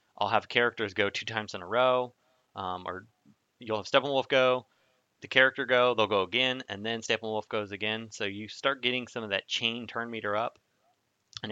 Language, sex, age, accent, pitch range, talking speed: English, male, 20-39, American, 105-125 Hz, 200 wpm